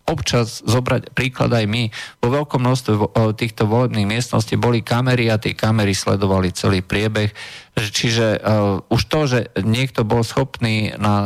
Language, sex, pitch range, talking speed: Slovak, male, 105-130 Hz, 150 wpm